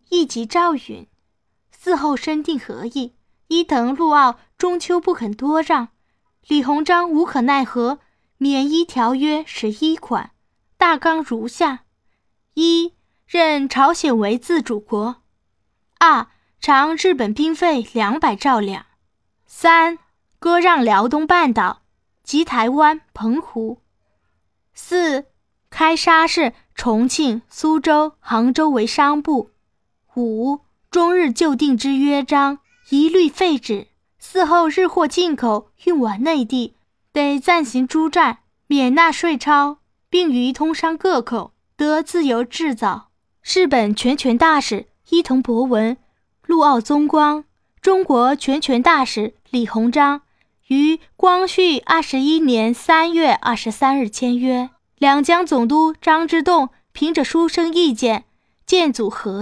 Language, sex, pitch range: Chinese, female, 245-330 Hz